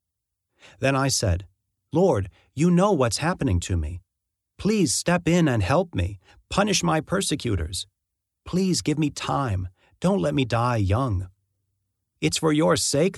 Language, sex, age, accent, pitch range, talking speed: English, male, 40-59, American, 95-140 Hz, 145 wpm